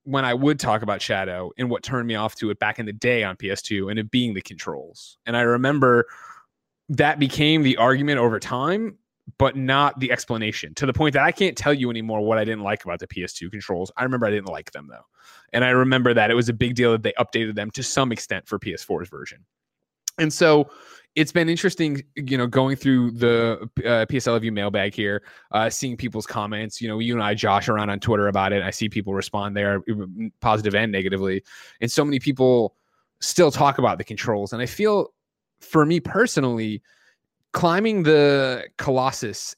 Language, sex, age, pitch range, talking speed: English, male, 20-39, 110-140 Hz, 205 wpm